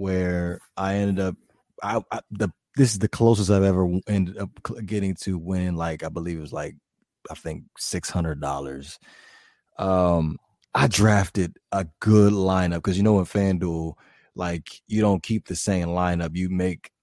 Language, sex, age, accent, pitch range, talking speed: English, male, 20-39, American, 95-125 Hz, 175 wpm